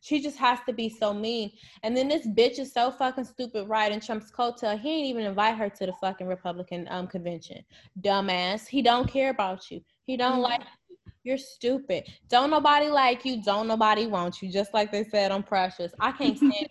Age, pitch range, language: 20-39, 175-235 Hz, English